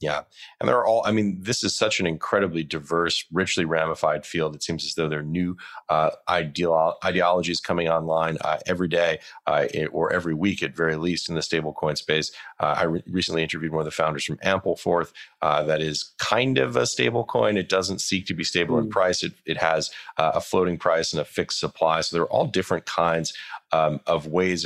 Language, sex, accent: English, male, American